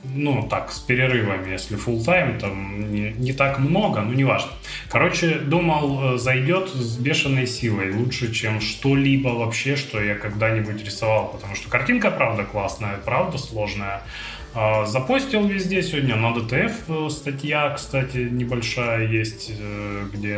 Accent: native